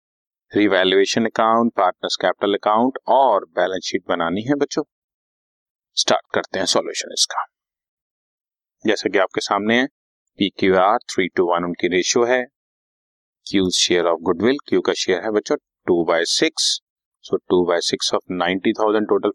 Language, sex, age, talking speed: Hindi, male, 30-49, 120 wpm